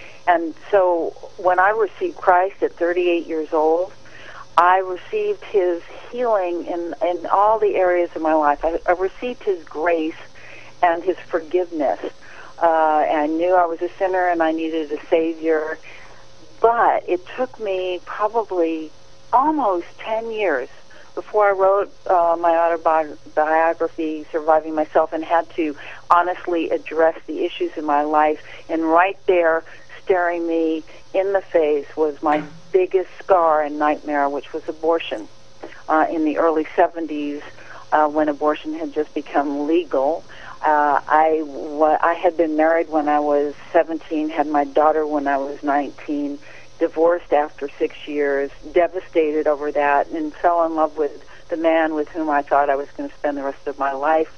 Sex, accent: female, American